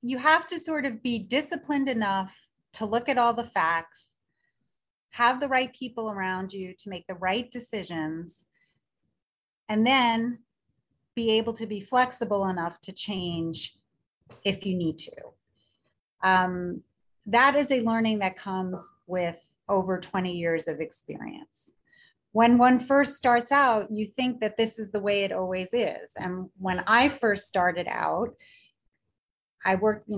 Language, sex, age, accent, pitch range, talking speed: English, female, 30-49, American, 185-240 Hz, 150 wpm